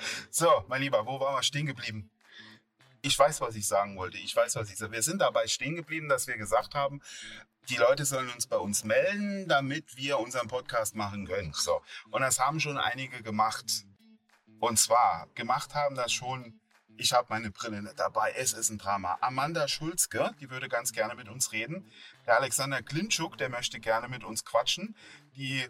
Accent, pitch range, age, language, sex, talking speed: German, 115-150 Hz, 30-49, German, male, 195 wpm